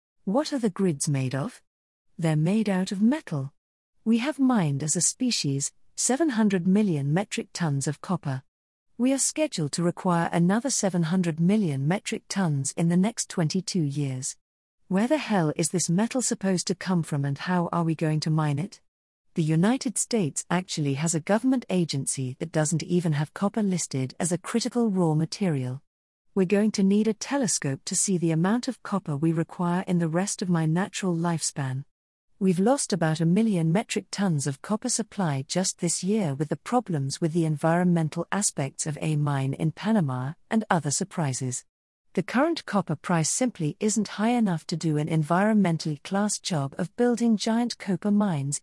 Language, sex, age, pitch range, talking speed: English, female, 40-59, 155-205 Hz, 175 wpm